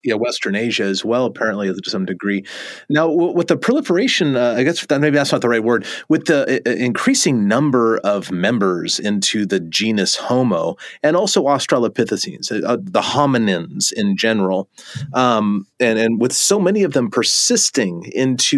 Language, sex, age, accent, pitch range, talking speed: English, male, 30-49, American, 100-160 Hz, 170 wpm